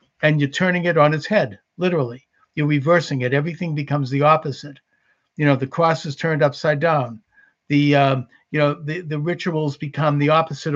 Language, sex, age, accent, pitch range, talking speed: English, male, 60-79, American, 140-165 Hz, 165 wpm